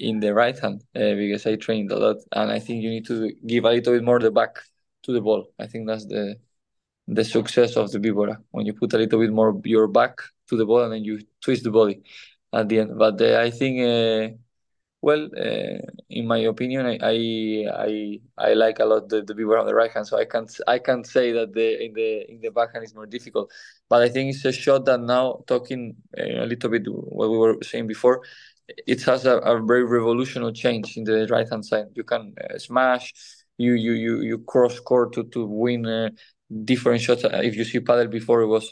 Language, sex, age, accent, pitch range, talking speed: English, male, 20-39, Spanish, 110-120 Hz, 230 wpm